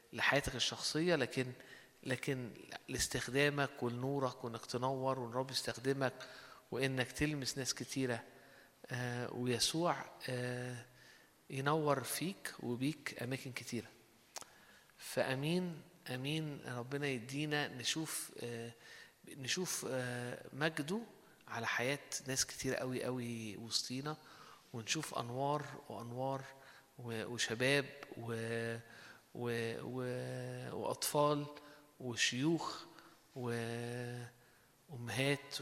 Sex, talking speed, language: male, 70 wpm, Arabic